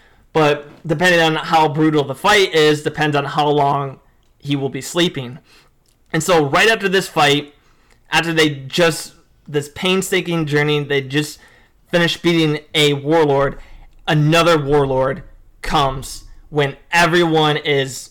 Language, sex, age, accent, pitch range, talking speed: English, male, 20-39, American, 140-165 Hz, 135 wpm